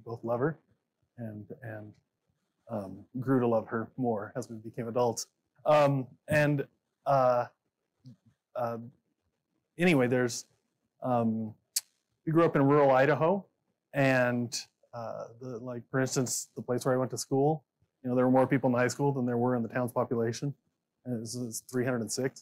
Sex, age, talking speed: male, 30-49, 170 wpm